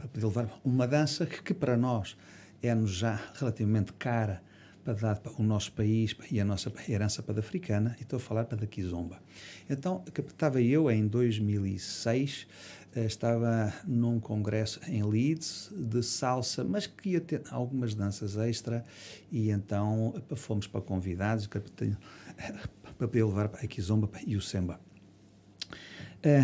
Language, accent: Portuguese, Portuguese